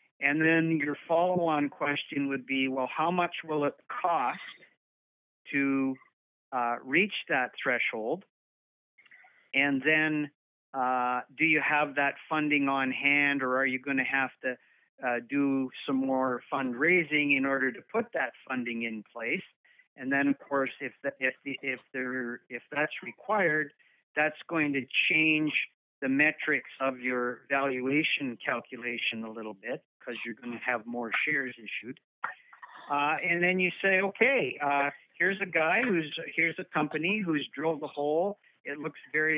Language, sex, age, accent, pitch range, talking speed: English, male, 50-69, American, 135-160 Hz, 150 wpm